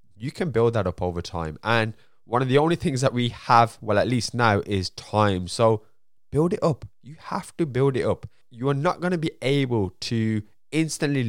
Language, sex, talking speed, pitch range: English, male, 220 wpm, 100-135 Hz